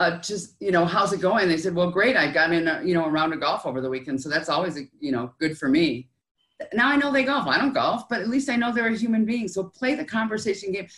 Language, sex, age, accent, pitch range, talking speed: English, female, 40-59, American, 160-230 Hz, 290 wpm